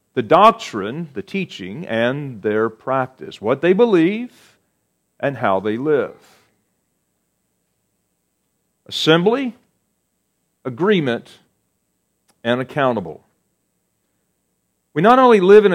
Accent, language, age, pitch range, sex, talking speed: American, English, 40-59, 130-185 Hz, male, 90 wpm